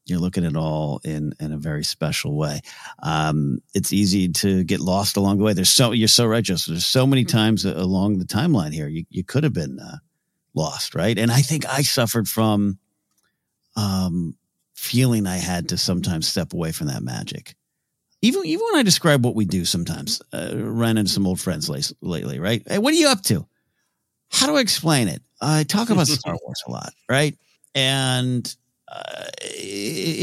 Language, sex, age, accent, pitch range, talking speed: English, male, 50-69, American, 95-145 Hz, 195 wpm